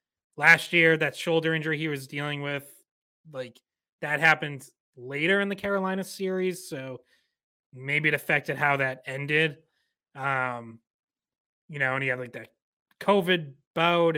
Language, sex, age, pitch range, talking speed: English, male, 30-49, 135-170 Hz, 145 wpm